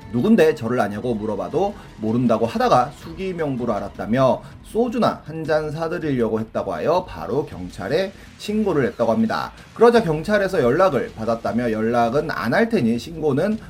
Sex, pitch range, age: male, 115-190 Hz, 30-49